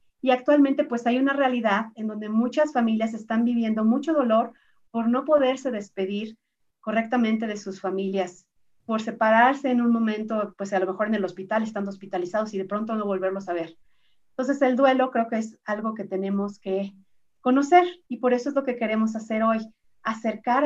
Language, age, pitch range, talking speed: Spanish, 40-59, 205-250 Hz, 185 wpm